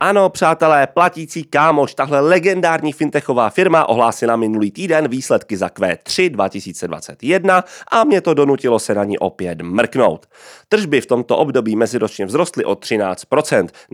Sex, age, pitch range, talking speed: male, 30-49, 100-160 Hz, 140 wpm